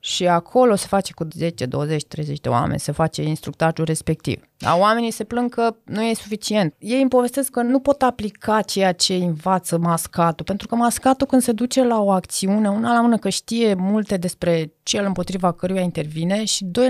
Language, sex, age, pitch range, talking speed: Romanian, female, 20-39, 170-230 Hz, 195 wpm